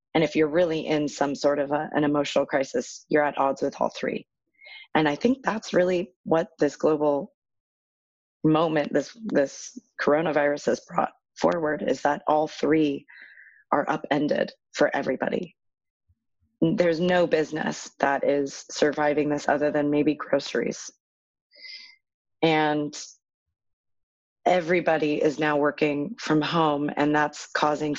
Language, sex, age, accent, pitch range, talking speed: English, female, 30-49, American, 145-165 Hz, 130 wpm